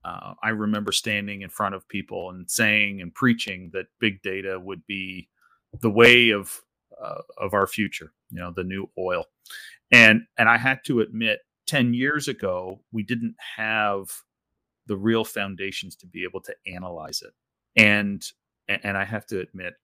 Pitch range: 95-115 Hz